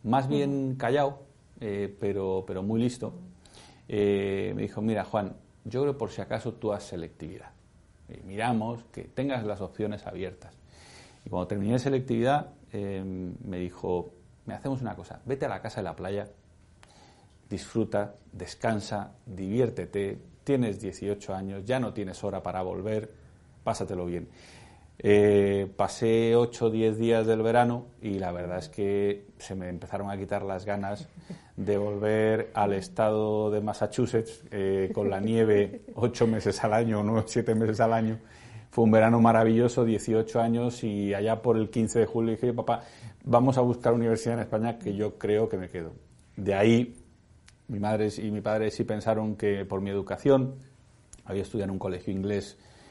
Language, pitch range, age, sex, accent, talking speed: Spanish, 100-115 Hz, 40-59, male, Spanish, 165 wpm